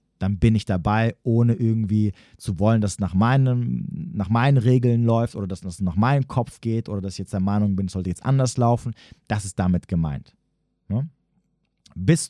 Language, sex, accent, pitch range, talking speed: German, male, German, 90-120 Hz, 200 wpm